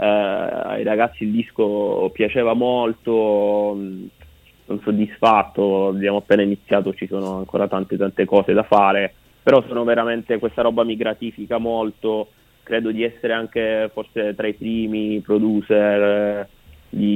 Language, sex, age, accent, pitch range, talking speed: Italian, male, 20-39, native, 100-110 Hz, 135 wpm